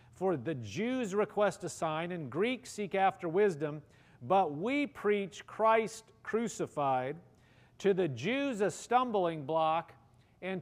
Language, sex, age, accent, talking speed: English, male, 40-59, American, 130 wpm